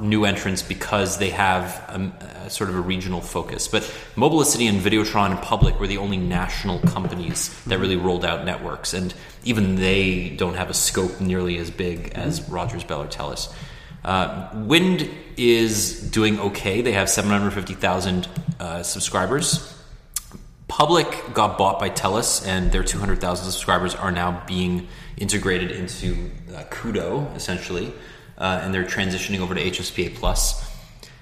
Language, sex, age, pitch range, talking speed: English, male, 30-49, 90-110 Hz, 150 wpm